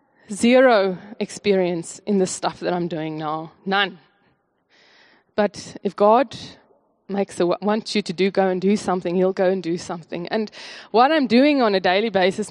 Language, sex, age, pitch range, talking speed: English, female, 20-39, 185-230 Hz, 175 wpm